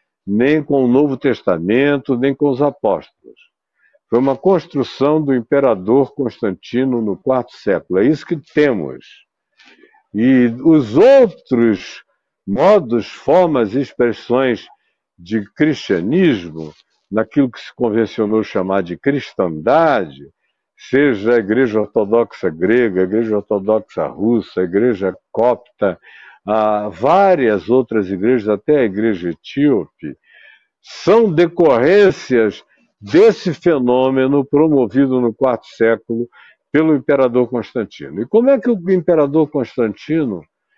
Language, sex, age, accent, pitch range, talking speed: Portuguese, male, 60-79, Brazilian, 120-185 Hz, 110 wpm